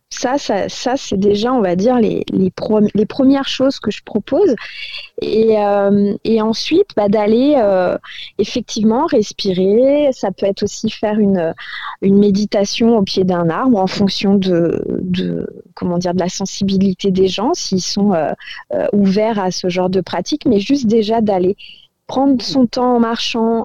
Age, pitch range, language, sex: 20-39, 200-250 Hz, French, female